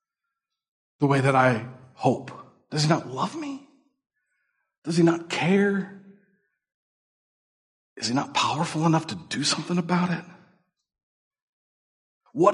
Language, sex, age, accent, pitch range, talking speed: English, male, 50-69, American, 140-215 Hz, 120 wpm